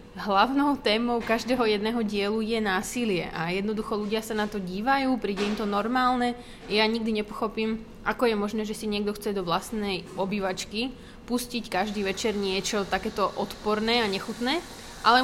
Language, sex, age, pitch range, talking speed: Slovak, female, 20-39, 205-235 Hz, 160 wpm